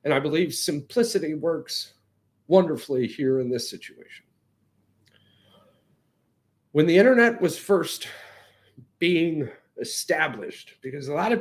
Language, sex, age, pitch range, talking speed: English, male, 40-59, 145-200 Hz, 110 wpm